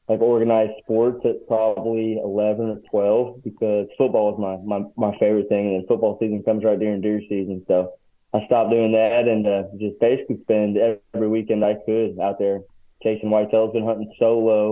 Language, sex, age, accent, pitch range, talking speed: English, male, 20-39, American, 100-110 Hz, 195 wpm